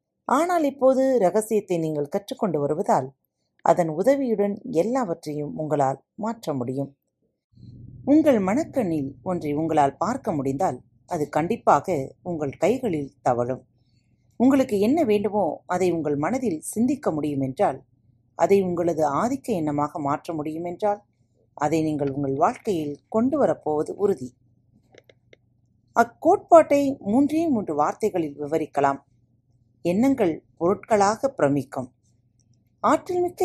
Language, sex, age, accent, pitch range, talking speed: Tamil, female, 30-49, native, 135-220 Hz, 100 wpm